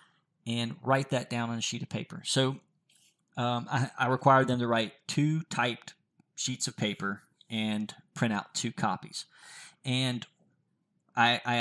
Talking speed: 155 wpm